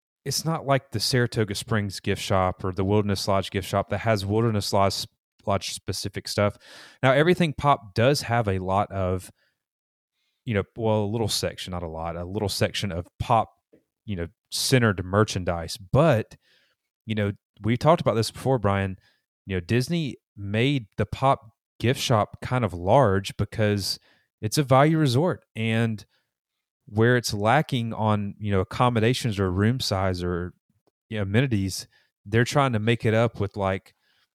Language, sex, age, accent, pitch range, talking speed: English, male, 30-49, American, 100-125 Hz, 165 wpm